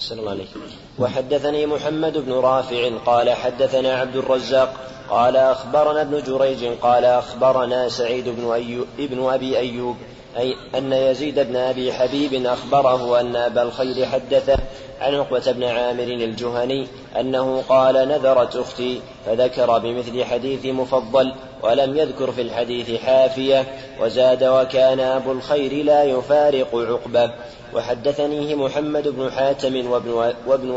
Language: Arabic